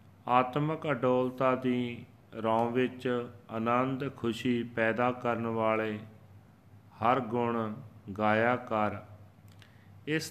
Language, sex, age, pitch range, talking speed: Punjabi, male, 40-59, 110-130 Hz, 80 wpm